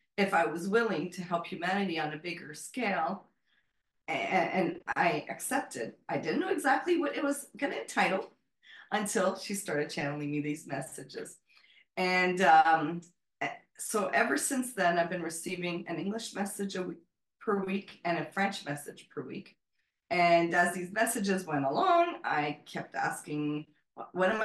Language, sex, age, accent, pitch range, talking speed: English, female, 30-49, American, 165-220 Hz, 155 wpm